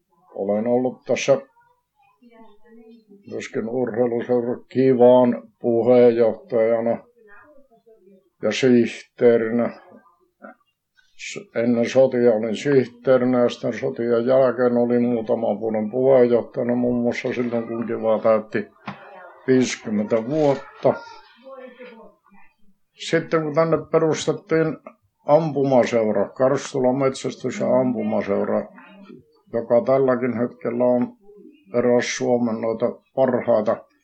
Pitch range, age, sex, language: 120-160 Hz, 60-79, male, Finnish